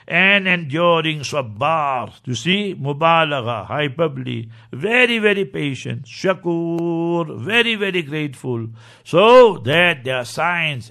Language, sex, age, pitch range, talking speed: English, male, 60-79, 150-180 Hz, 105 wpm